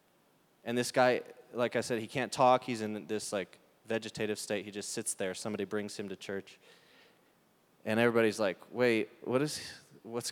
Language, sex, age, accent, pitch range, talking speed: English, male, 20-39, American, 110-155 Hz, 185 wpm